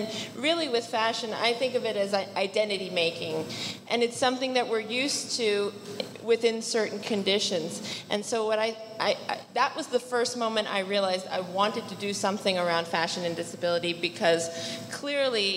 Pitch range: 200-235 Hz